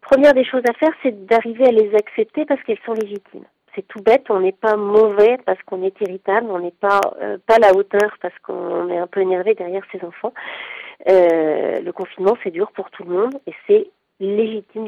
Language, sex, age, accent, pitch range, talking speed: French, female, 40-59, French, 195-270 Hz, 220 wpm